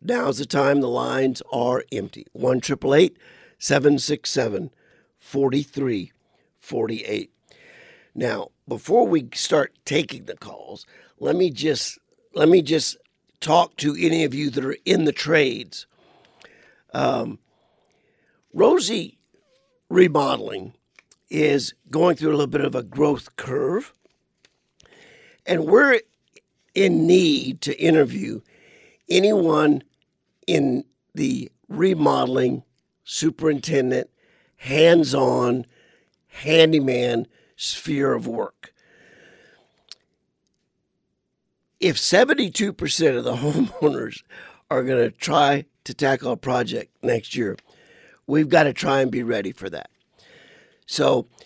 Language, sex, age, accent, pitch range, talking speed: English, male, 50-69, American, 135-200 Hz, 110 wpm